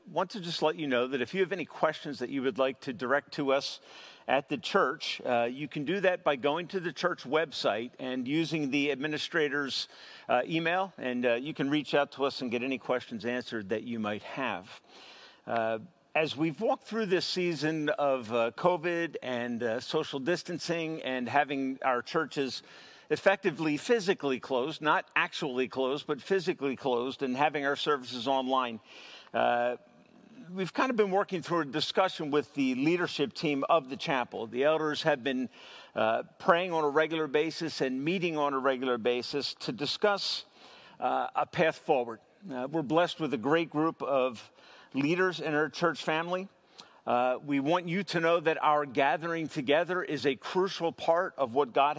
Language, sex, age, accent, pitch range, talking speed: English, male, 50-69, American, 135-170 Hz, 180 wpm